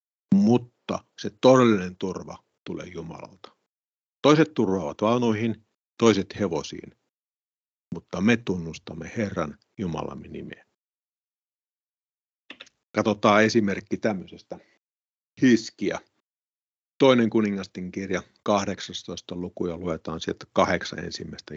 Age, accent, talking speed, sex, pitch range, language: 50-69, native, 85 wpm, male, 90-115 Hz, Finnish